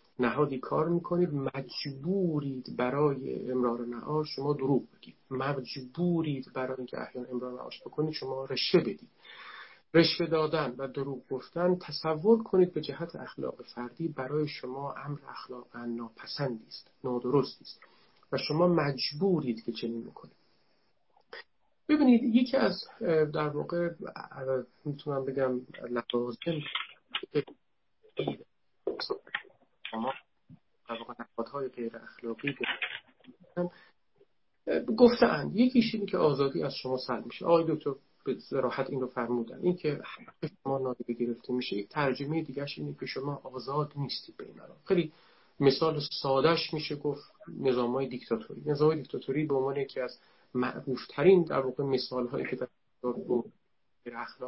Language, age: Persian, 40-59